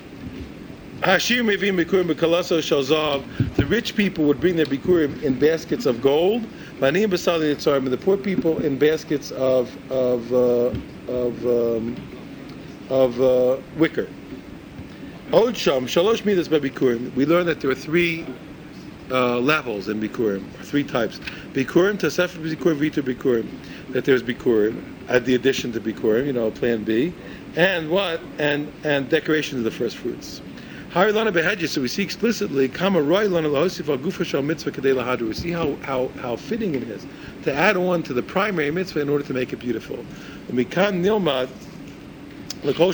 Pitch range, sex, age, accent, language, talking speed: 130-180 Hz, male, 50-69, American, English, 130 wpm